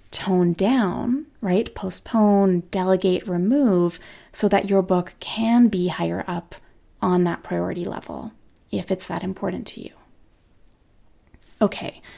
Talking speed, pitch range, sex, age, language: 125 wpm, 185-235 Hz, female, 20-39, English